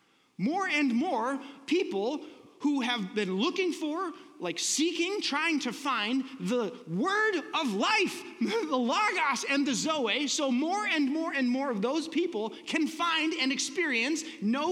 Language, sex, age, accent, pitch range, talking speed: English, male, 30-49, American, 255-325 Hz, 150 wpm